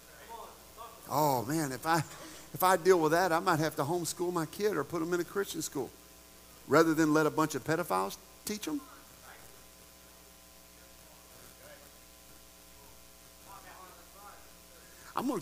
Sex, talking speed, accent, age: male, 130 wpm, American, 50-69